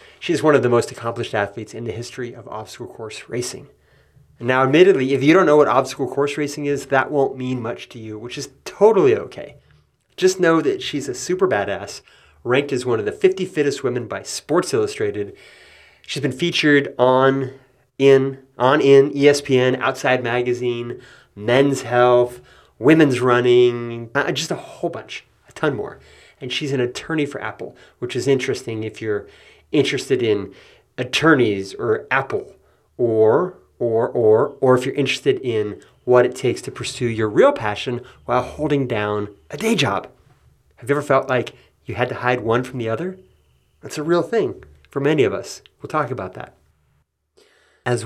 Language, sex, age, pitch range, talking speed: English, male, 30-49, 115-150 Hz, 175 wpm